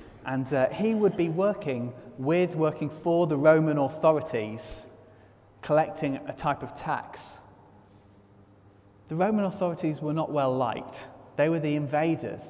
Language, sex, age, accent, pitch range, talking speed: English, male, 30-49, British, 105-170 Hz, 135 wpm